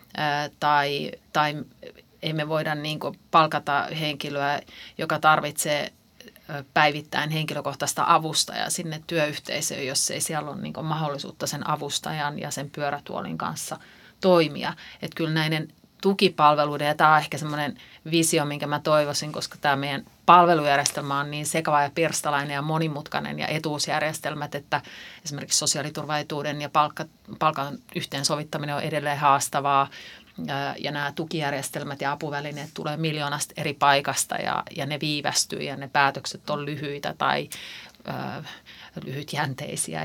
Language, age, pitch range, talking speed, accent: Finnish, 30-49, 145-160 Hz, 120 wpm, native